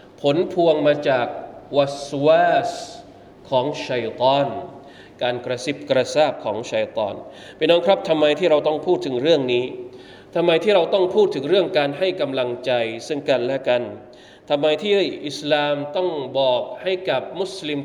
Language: Thai